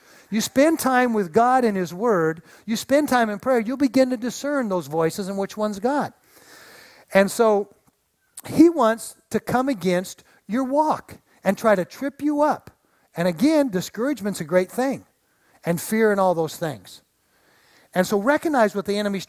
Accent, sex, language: American, male, English